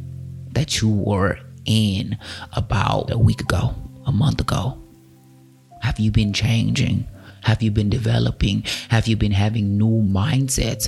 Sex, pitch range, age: male, 100-120 Hz, 30-49